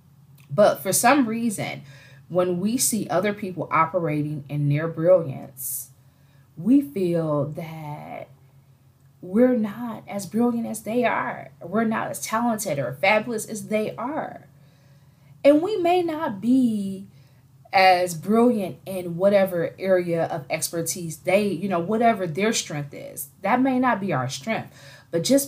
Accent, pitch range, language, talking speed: American, 140-200 Hz, English, 140 wpm